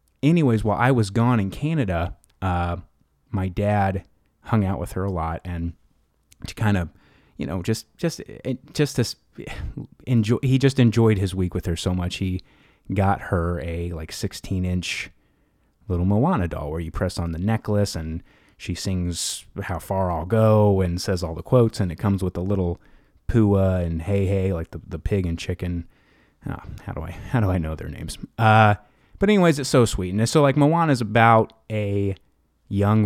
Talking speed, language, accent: 190 wpm, English, American